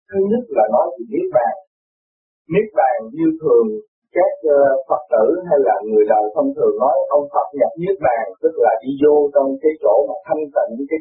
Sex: male